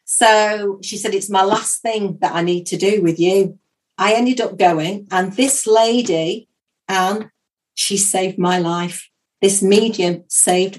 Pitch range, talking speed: 175-200 Hz, 160 wpm